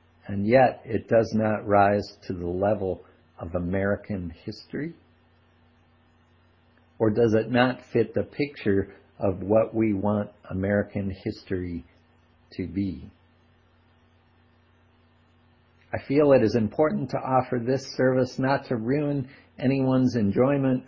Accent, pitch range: American, 95-125 Hz